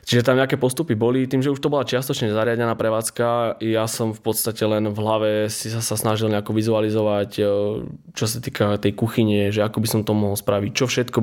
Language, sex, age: Slovak, male, 20-39